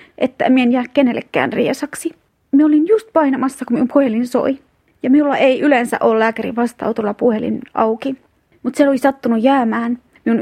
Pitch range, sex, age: 220-270 Hz, female, 30-49